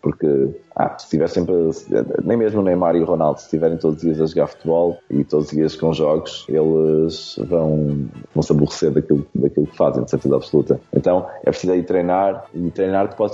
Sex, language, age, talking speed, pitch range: male, Portuguese, 20-39, 205 wpm, 80-95 Hz